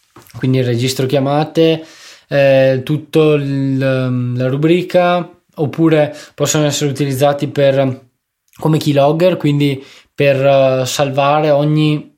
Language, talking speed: Italian, 95 wpm